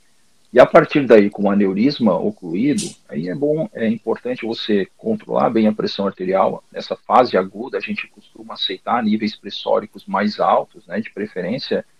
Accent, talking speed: Brazilian, 165 wpm